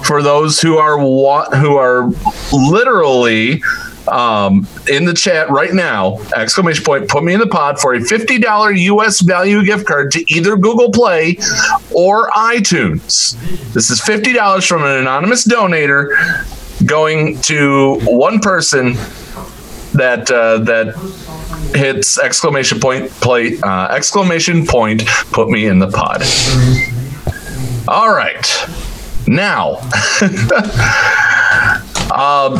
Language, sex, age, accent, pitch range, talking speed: English, male, 40-59, American, 130-185 Hz, 120 wpm